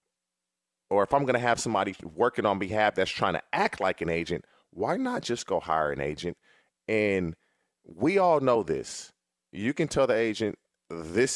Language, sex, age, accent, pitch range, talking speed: English, male, 30-49, American, 95-130 Hz, 185 wpm